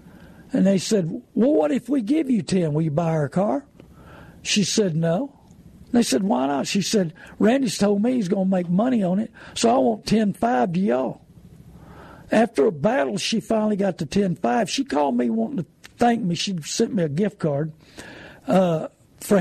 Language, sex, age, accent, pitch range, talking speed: English, male, 60-79, American, 165-220 Hz, 200 wpm